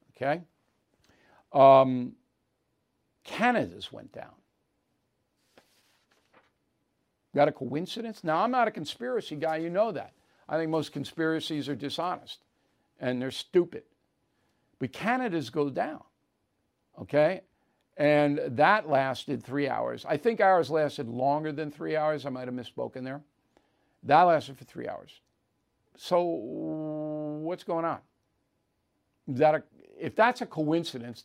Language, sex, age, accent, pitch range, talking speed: English, male, 60-79, American, 140-165 Hz, 125 wpm